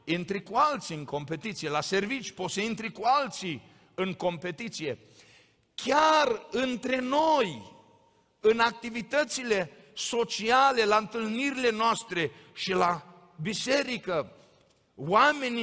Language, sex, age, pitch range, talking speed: Romanian, male, 50-69, 175-235 Hz, 105 wpm